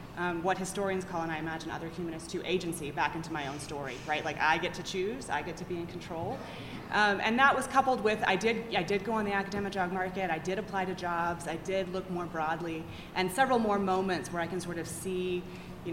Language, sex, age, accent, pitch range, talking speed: English, female, 20-39, American, 165-195 Hz, 245 wpm